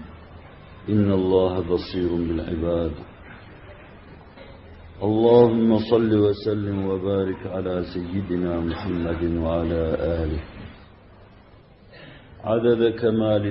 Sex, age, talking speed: male, 50-69, 65 wpm